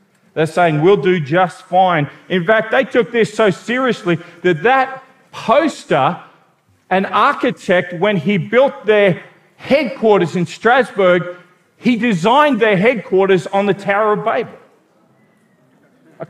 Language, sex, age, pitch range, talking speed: English, male, 40-59, 180-245 Hz, 130 wpm